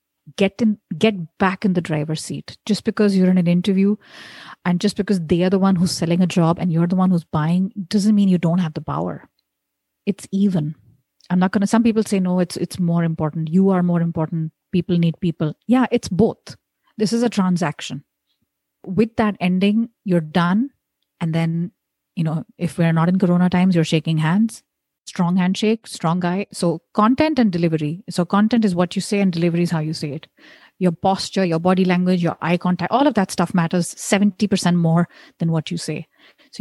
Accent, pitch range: Indian, 165-200 Hz